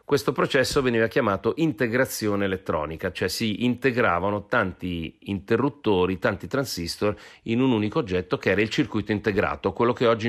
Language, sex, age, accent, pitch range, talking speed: Italian, male, 40-59, native, 95-120 Hz, 145 wpm